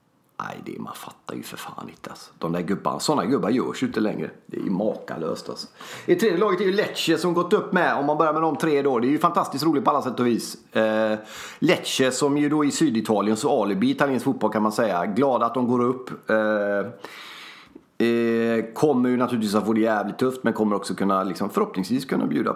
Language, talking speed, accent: Swedish, 235 wpm, native